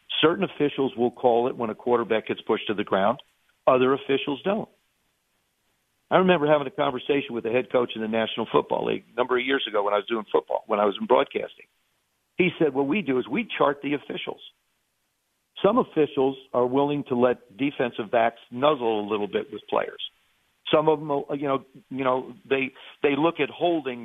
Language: English